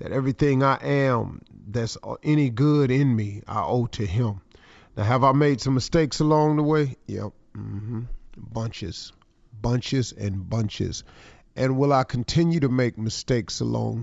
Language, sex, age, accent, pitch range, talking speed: English, male, 40-59, American, 110-135 Hz, 160 wpm